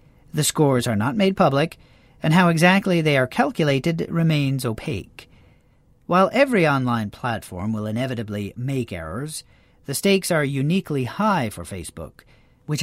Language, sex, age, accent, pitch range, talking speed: English, male, 40-59, American, 125-170 Hz, 140 wpm